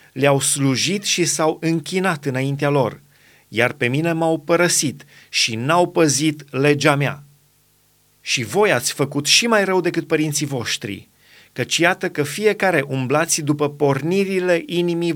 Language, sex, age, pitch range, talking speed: Romanian, male, 30-49, 140-170 Hz, 140 wpm